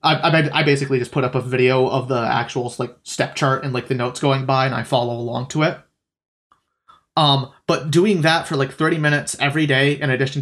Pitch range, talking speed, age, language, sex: 135-160 Hz, 220 wpm, 30-49, English, male